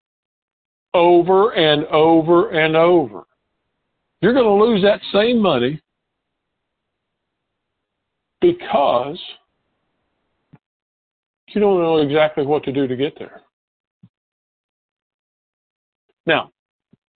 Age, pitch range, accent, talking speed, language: 50-69, 130-190 Hz, American, 80 wpm, English